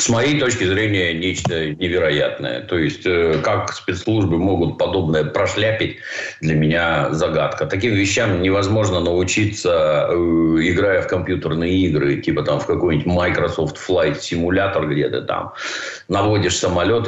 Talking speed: 135 wpm